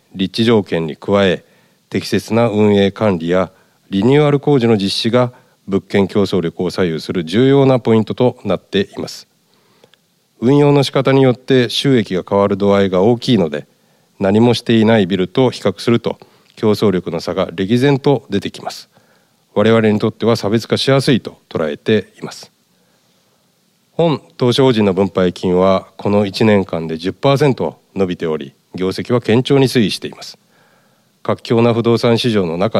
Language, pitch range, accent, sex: Japanese, 95-120 Hz, native, male